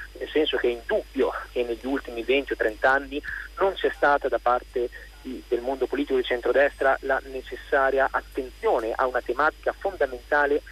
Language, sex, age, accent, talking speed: Italian, male, 30-49, native, 160 wpm